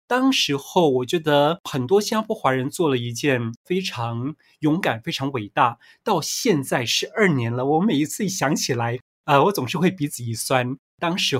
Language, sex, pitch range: Chinese, male, 125-170 Hz